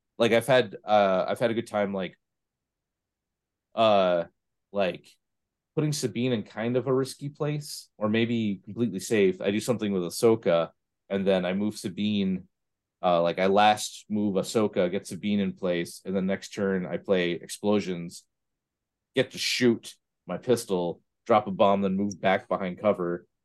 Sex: male